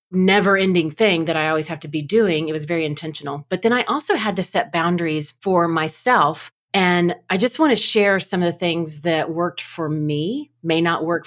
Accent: American